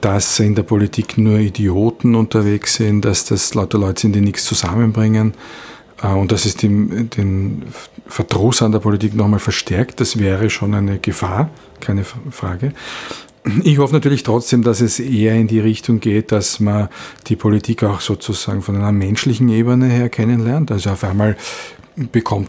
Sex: male